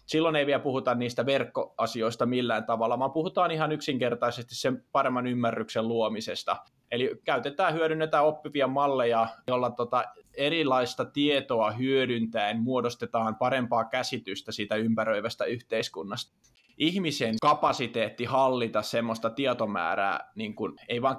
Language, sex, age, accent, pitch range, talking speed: Finnish, male, 20-39, native, 115-140 Hz, 115 wpm